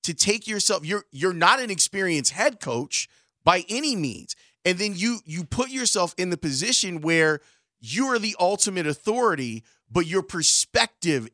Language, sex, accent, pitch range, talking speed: English, male, American, 155-205 Hz, 165 wpm